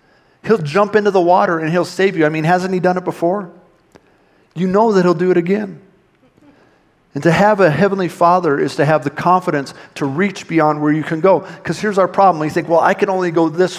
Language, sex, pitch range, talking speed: English, male, 150-180 Hz, 230 wpm